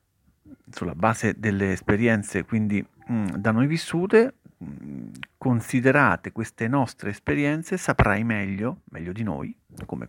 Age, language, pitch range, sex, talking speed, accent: 50-69, Italian, 100-130 Hz, male, 105 wpm, native